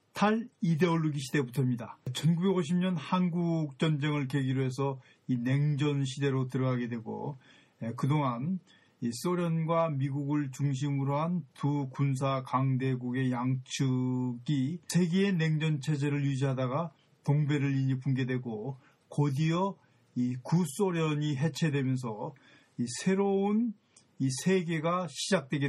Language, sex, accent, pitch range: Korean, male, native, 135-185 Hz